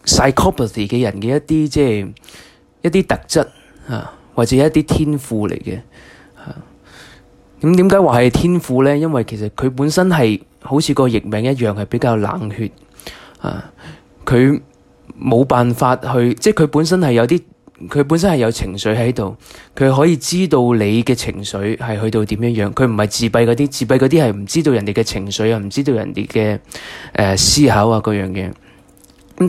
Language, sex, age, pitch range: Chinese, male, 20-39, 105-145 Hz